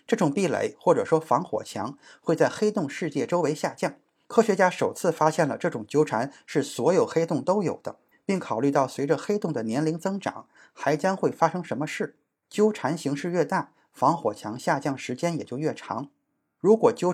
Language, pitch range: Chinese, 140-185 Hz